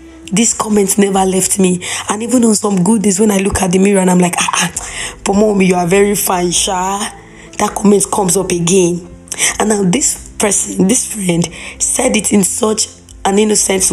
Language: English